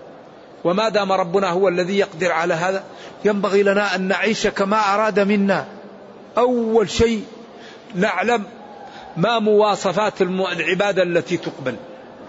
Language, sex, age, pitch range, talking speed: Arabic, male, 50-69, 185-220 Hz, 110 wpm